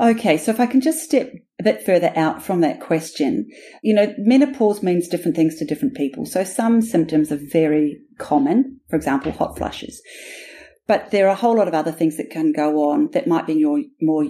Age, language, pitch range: 40-59, English, 155-230 Hz